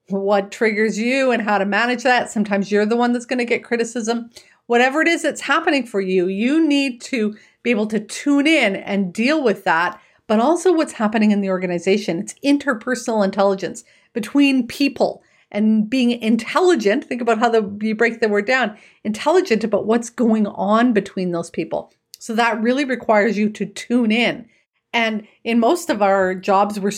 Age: 40-59